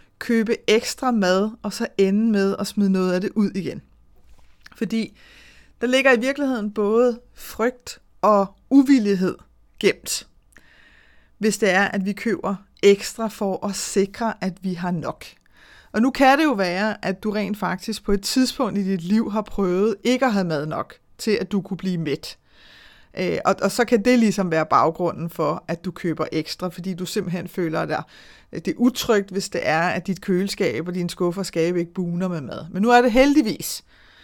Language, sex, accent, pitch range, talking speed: Danish, female, native, 175-220 Hz, 180 wpm